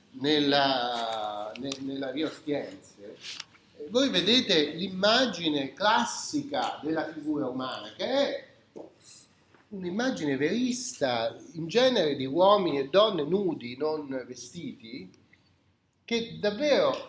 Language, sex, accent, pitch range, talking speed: Italian, male, native, 130-200 Hz, 90 wpm